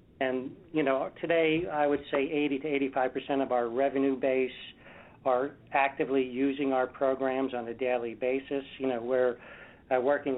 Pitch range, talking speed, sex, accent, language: 125-145 Hz, 160 wpm, male, American, English